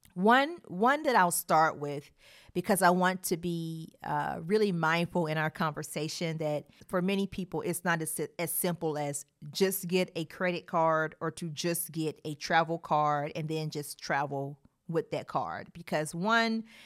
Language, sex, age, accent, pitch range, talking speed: English, female, 40-59, American, 155-185 Hz, 170 wpm